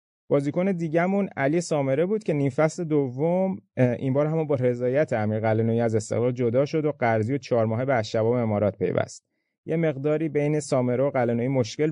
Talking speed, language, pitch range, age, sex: 175 wpm, Persian, 120-155 Hz, 30-49, male